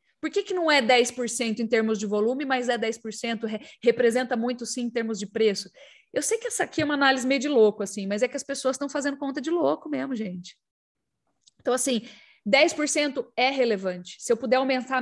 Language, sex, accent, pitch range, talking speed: Portuguese, female, Brazilian, 225-275 Hz, 210 wpm